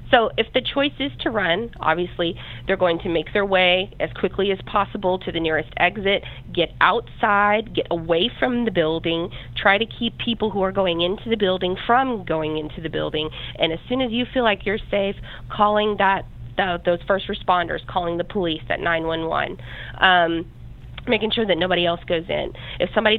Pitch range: 160-215 Hz